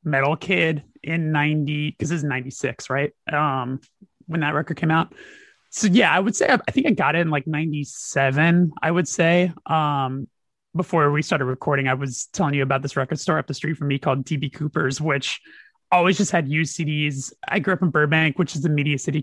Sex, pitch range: male, 140-170 Hz